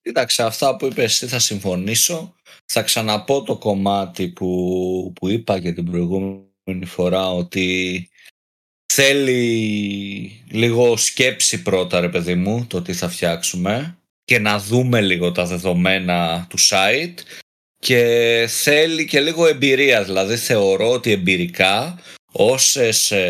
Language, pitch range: Greek, 95-140 Hz